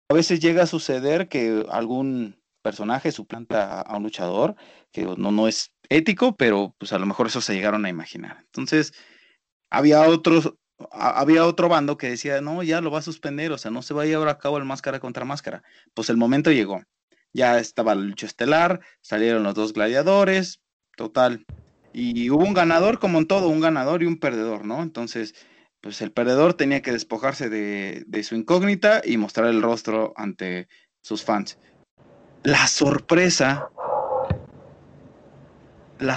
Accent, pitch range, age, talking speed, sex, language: Mexican, 115-160 Hz, 30-49, 170 wpm, male, Spanish